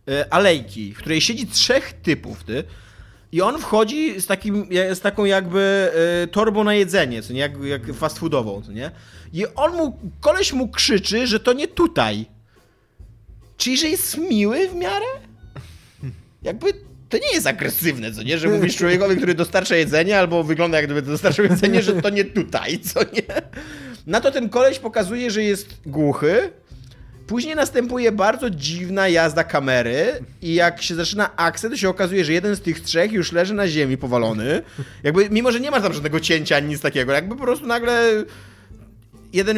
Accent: native